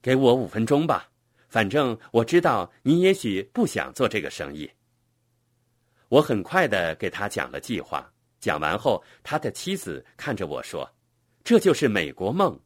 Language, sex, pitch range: Chinese, male, 115-155 Hz